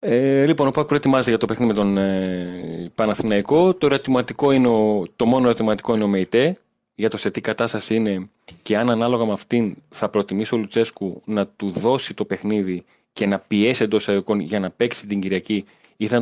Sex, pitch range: male, 95-120 Hz